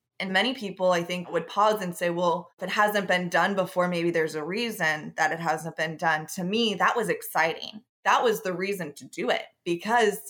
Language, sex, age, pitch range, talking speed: English, female, 20-39, 170-205 Hz, 220 wpm